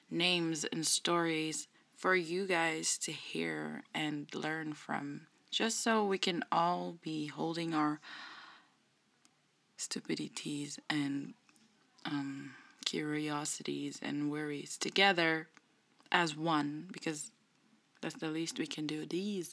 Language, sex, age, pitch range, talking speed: English, female, 20-39, 155-195 Hz, 110 wpm